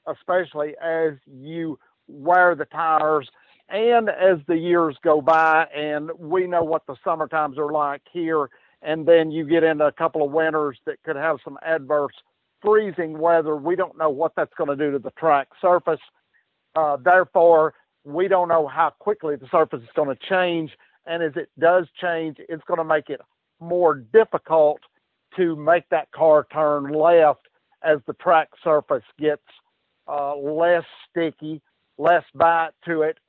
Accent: American